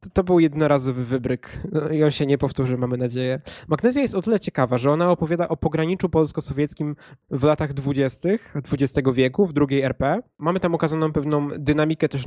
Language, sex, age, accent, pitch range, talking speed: Polish, male, 20-39, native, 135-155 Hz, 175 wpm